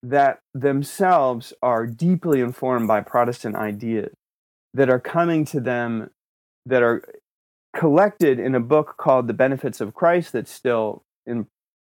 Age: 30-49